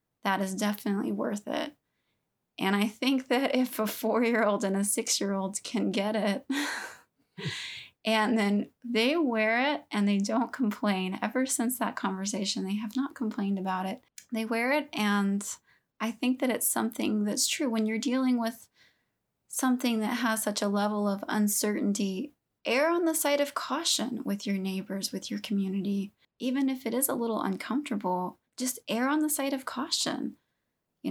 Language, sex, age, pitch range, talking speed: English, female, 20-39, 195-235 Hz, 170 wpm